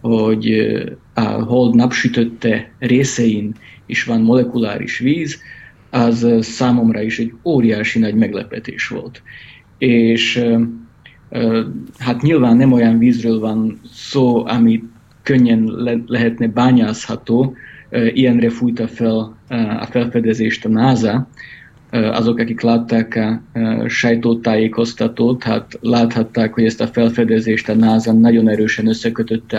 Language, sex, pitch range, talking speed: Hungarian, male, 110-120 Hz, 105 wpm